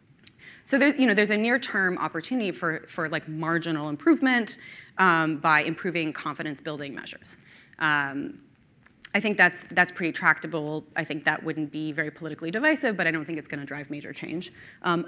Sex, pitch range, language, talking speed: female, 155-180 Hz, English, 175 wpm